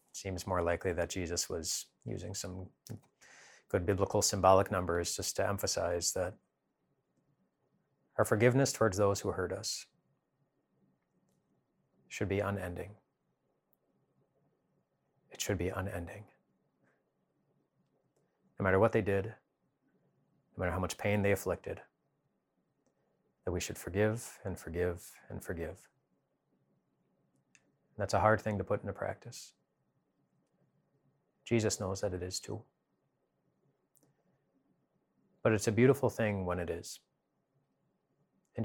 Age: 30-49